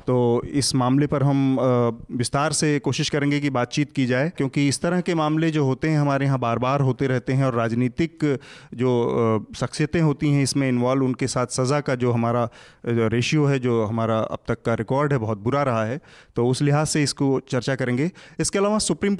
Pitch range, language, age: 125-150 Hz, Hindi, 30-49